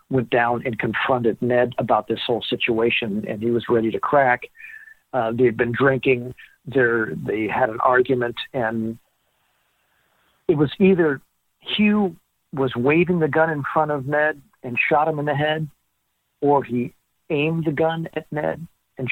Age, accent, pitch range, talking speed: 60-79, American, 125-150 Hz, 160 wpm